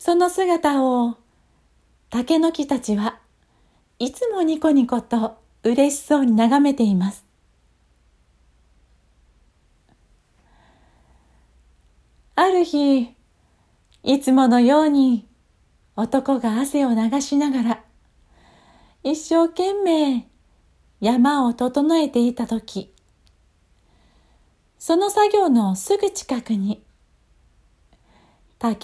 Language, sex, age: Japanese, female, 40-59